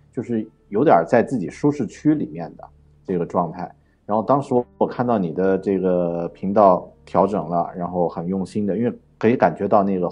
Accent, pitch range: native, 85-105 Hz